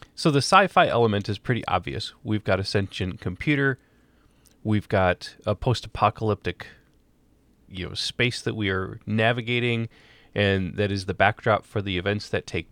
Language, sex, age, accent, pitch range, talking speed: English, male, 30-49, American, 100-120 Hz, 155 wpm